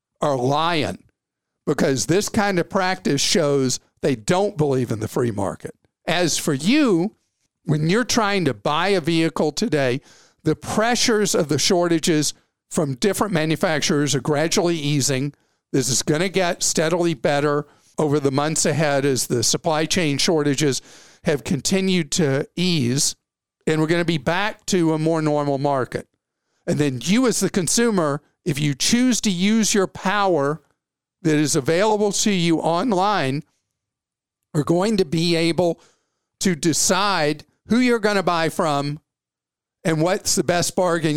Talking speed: 155 wpm